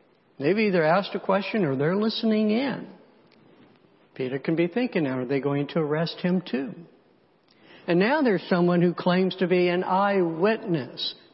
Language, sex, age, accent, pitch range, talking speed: English, male, 60-79, American, 150-190 Hz, 165 wpm